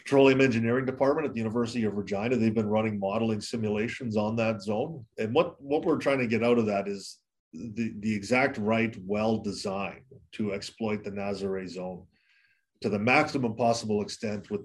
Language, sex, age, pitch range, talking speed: English, male, 30-49, 100-115 Hz, 180 wpm